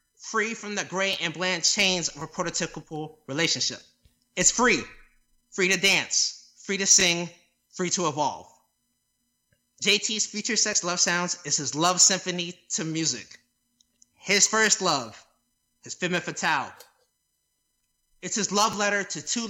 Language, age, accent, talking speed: English, 30-49, American, 140 wpm